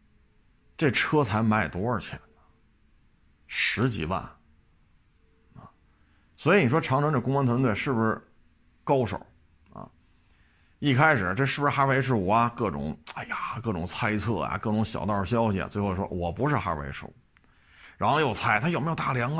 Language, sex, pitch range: Chinese, male, 95-145 Hz